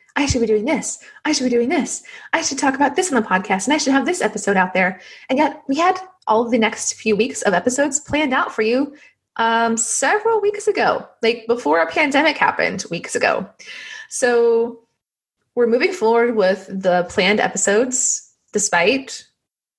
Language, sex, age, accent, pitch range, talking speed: English, female, 20-39, American, 205-290 Hz, 190 wpm